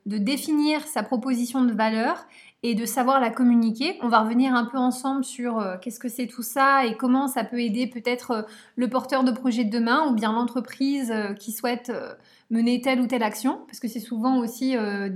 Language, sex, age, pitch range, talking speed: French, female, 20-39, 225-265 Hz, 210 wpm